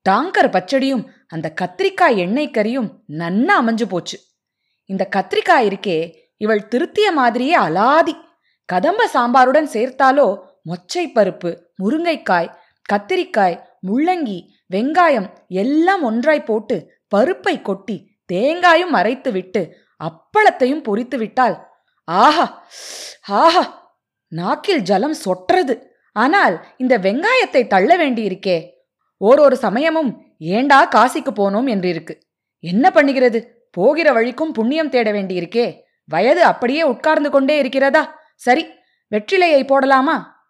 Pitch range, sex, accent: 205-305 Hz, female, native